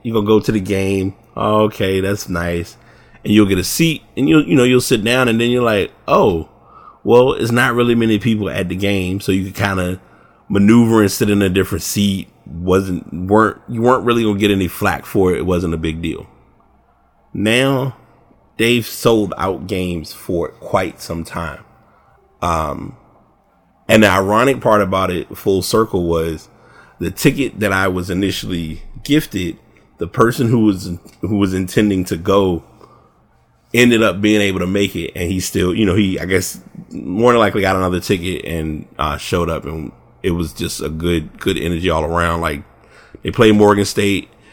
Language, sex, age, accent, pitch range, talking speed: English, male, 30-49, American, 90-110 Hz, 185 wpm